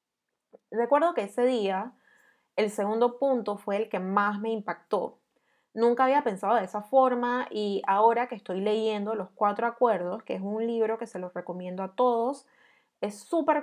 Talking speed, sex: 170 wpm, female